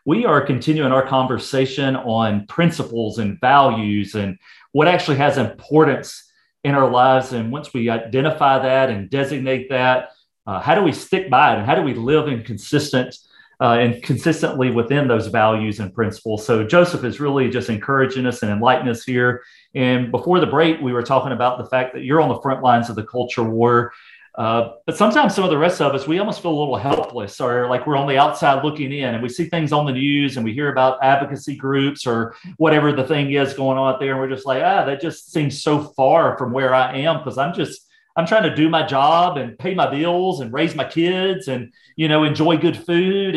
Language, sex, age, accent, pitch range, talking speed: English, male, 40-59, American, 125-155 Hz, 220 wpm